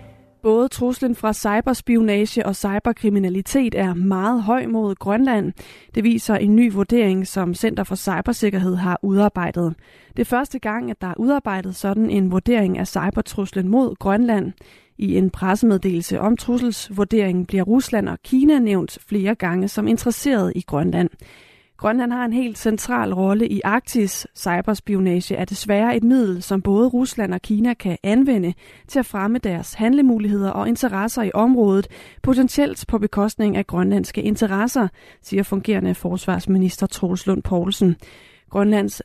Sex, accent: female, native